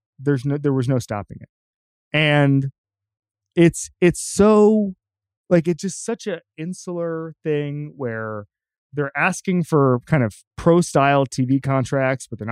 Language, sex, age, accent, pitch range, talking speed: English, male, 20-39, American, 130-175 Hz, 140 wpm